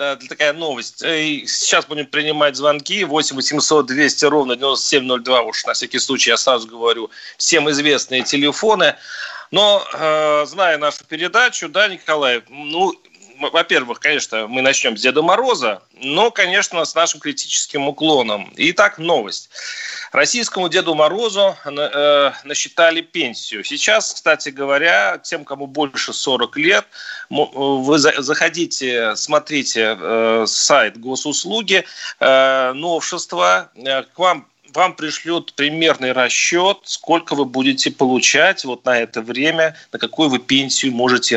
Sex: male